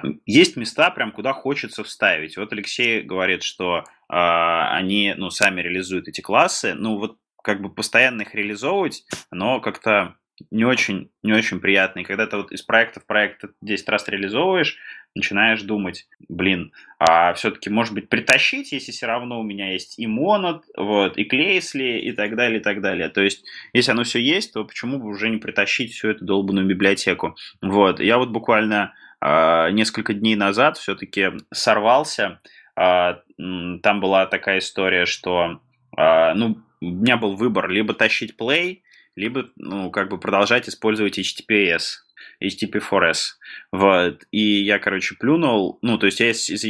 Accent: native